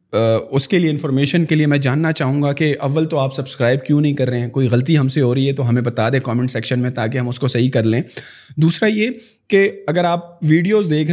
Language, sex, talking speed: Urdu, male, 265 wpm